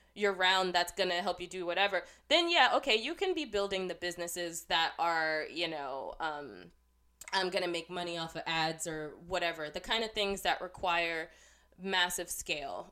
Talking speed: 190 wpm